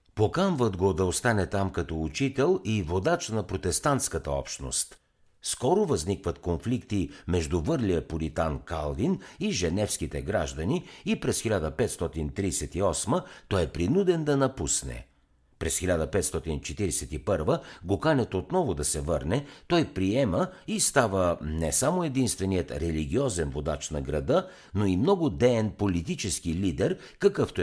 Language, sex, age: Bulgarian, male, 60-79